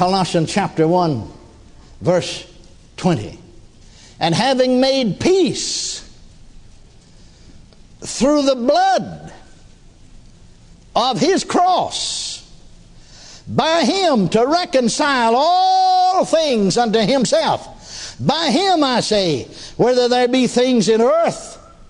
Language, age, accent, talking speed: English, 60-79, American, 90 wpm